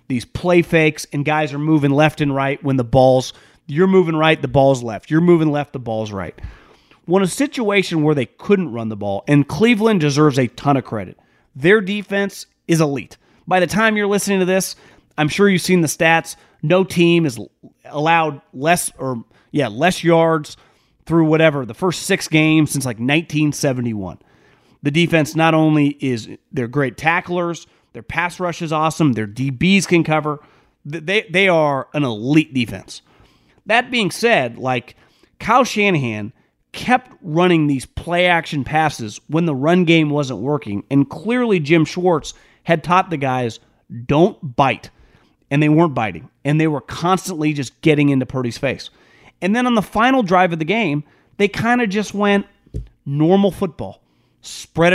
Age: 30-49